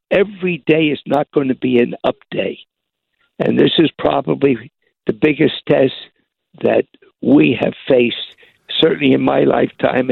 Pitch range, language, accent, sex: 140-190 Hz, English, American, male